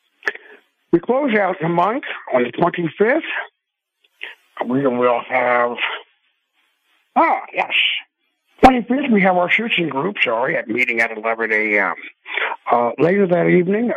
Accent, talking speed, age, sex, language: American, 130 wpm, 60-79, male, English